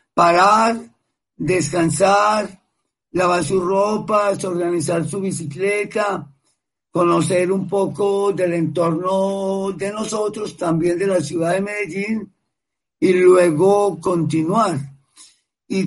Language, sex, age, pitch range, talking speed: Spanish, male, 50-69, 170-200 Hz, 95 wpm